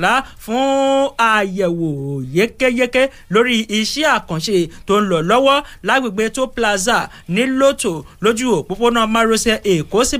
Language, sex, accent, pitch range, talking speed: English, male, Nigerian, 175-230 Hz, 145 wpm